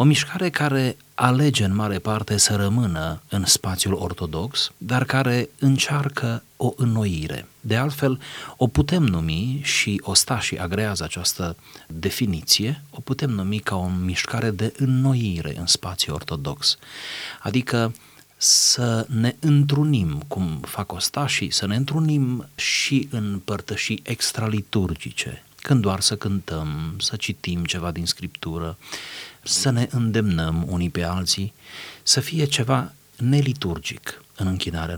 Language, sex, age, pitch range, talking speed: Romanian, male, 30-49, 90-130 Hz, 125 wpm